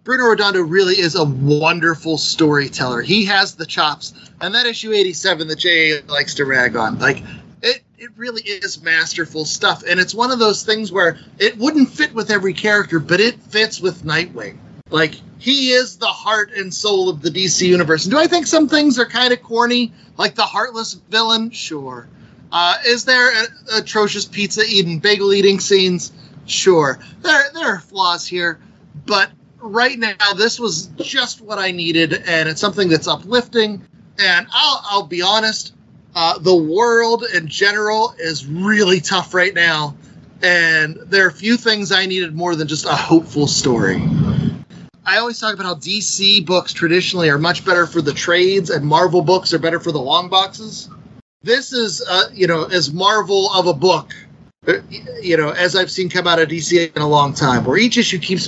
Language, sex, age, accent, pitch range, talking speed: English, male, 30-49, American, 165-220 Hz, 185 wpm